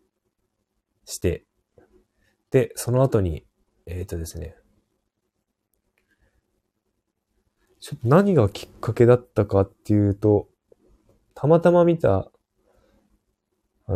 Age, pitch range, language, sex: 20-39, 90-110 Hz, Japanese, male